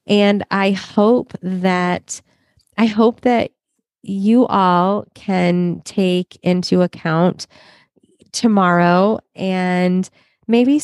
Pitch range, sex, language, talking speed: 180-230 Hz, female, English, 90 wpm